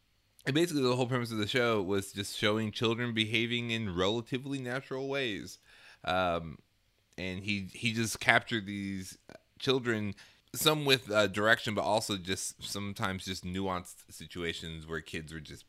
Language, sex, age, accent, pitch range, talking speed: English, male, 30-49, American, 90-115 Hz, 150 wpm